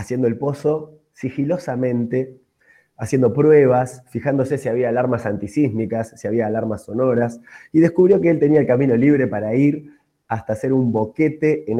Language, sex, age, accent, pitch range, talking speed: Spanish, male, 20-39, Argentinian, 115-155 Hz, 155 wpm